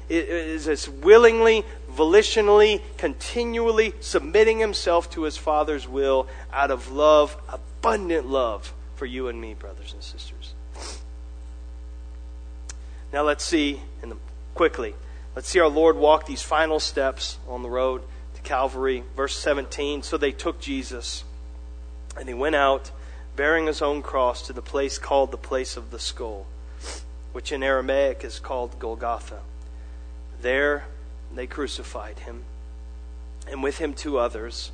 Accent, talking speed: American, 135 wpm